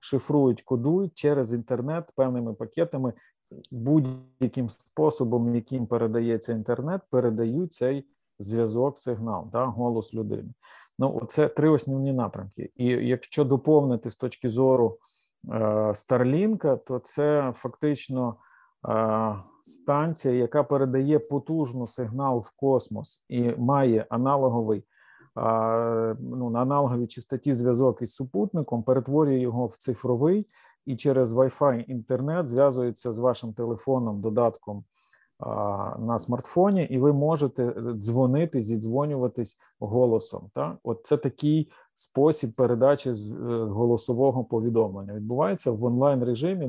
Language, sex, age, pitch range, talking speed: Ukrainian, male, 40-59, 115-140 Hz, 110 wpm